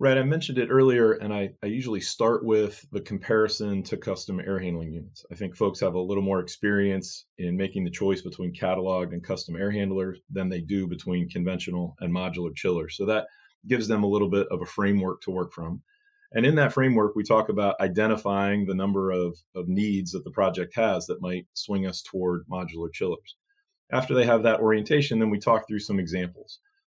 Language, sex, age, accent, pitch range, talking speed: English, male, 30-49, American, 90-110 Hz, 205 wpm